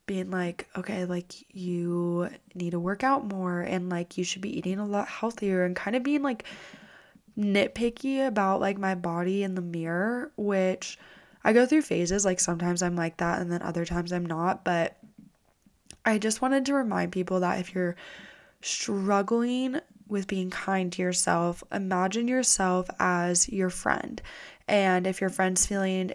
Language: English